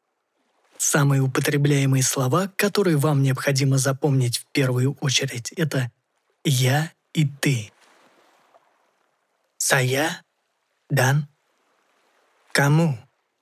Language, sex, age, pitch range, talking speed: Russian, male, 20-39, 135-165 Hz, 75 wpm